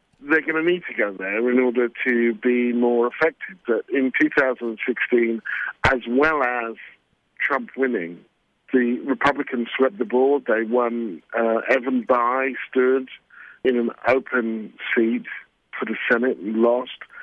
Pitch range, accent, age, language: 115-135 Hz, British, 50-69, English